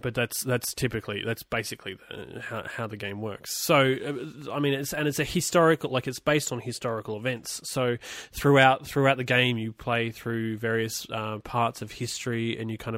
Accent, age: Australian, 20-39